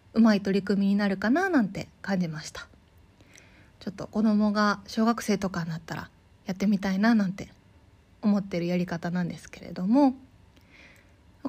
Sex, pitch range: female, 175-245 Hz